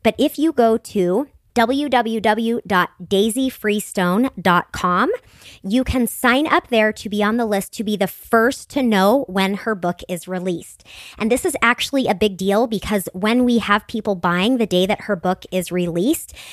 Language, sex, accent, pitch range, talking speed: English, male, American, 190-245 Hz, 170 wpm